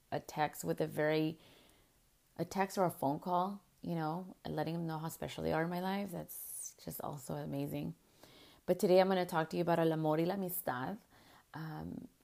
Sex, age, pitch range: female, 30-49, 155-180 Hz